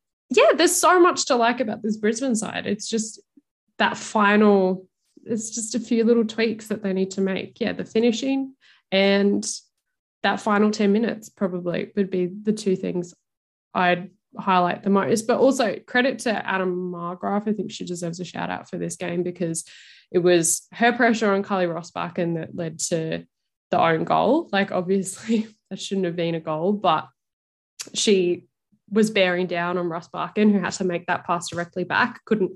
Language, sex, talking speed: English, female, 180 wpm